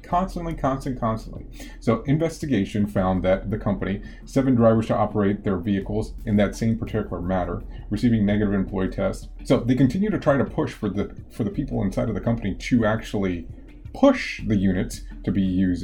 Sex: male